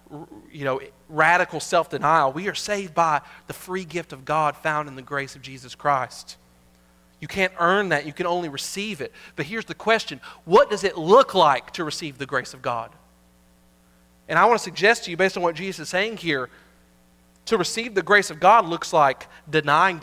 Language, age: English, 30-49